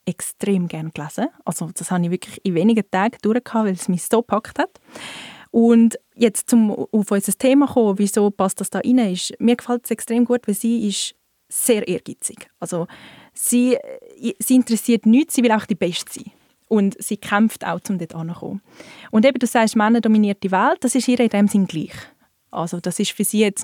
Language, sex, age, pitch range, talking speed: German, female, 20-39, 195-245 Hz, 200 wpm